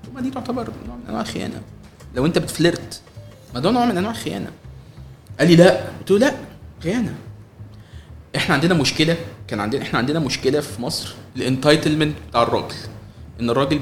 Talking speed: 160 wpm